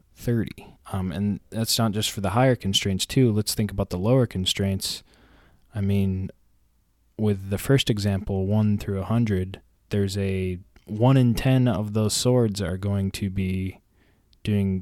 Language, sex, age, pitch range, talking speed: English, male, 20-39, 95-110 Hz, 160 wpm